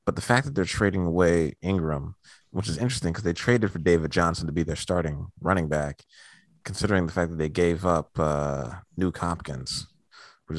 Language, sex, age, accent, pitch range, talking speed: English, male, 30-49, American, 85-100 Hz, 195 wpm